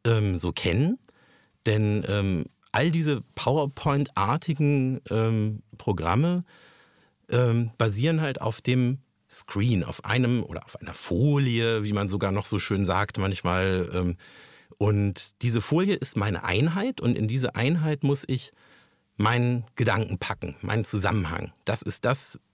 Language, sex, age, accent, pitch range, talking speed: German, male, 50-69, German, 100-135 Hz, 130 wpm